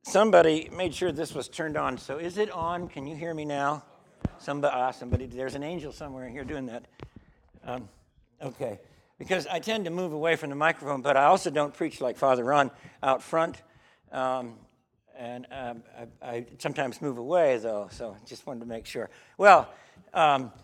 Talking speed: 190 wpm